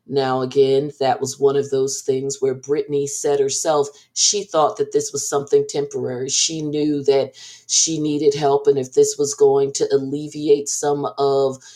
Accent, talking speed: American, 175 wpm